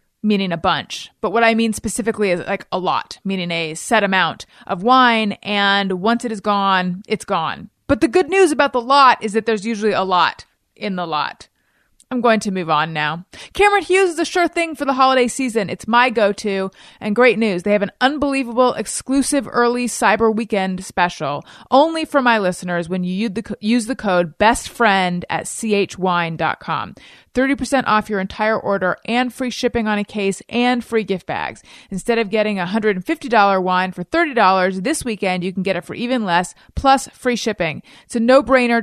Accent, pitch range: American, 190-245 Hz